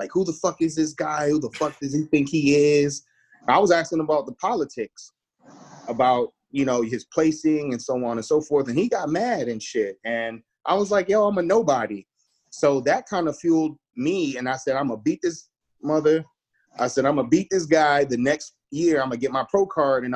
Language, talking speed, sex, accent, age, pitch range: English, 240 wpm, male, American, 30-49, 130-170 Hz